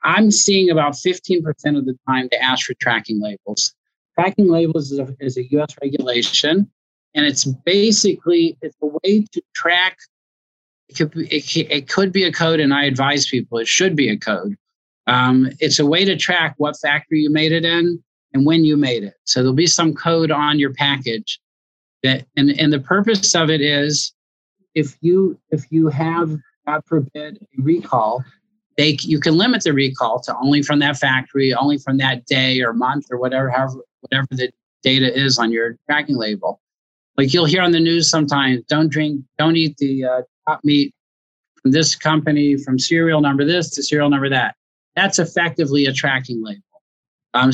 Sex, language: male, English